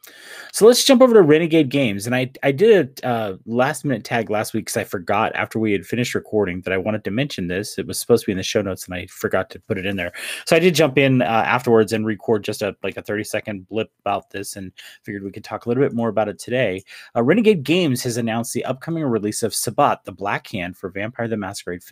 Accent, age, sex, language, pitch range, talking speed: American, 30-49, male, English, 100-125 Hz, 265 wpm